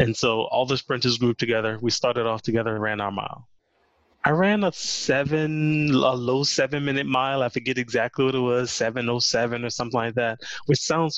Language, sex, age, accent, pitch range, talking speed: English, male, 20-39, American, 115-145 Hz, 200 wpm